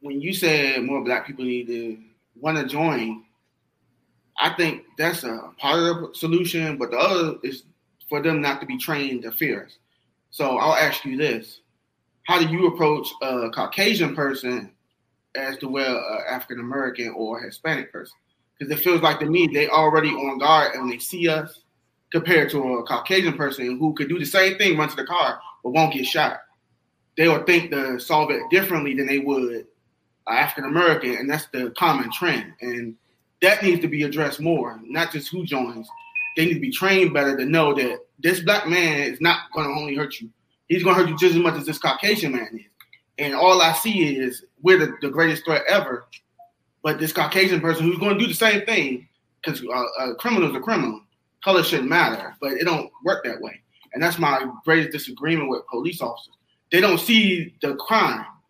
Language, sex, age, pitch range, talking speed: English, male, 20-39, 130-170 Hz, 200 wpm